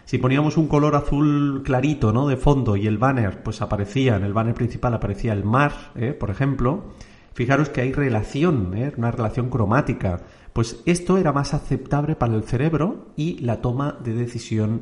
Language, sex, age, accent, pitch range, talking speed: Spanish, male, 40-59, Spanish, 110-145 Hz, 180 wpm